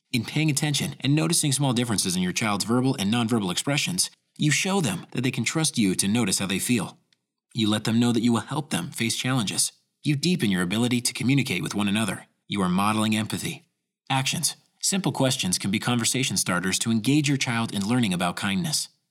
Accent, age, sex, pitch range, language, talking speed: American, 30-49, male, 115-160 Hz, English, 205 wpm